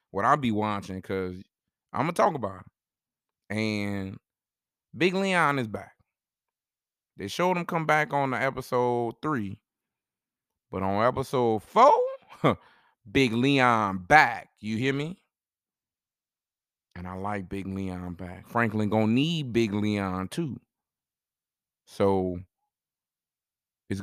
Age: 20-39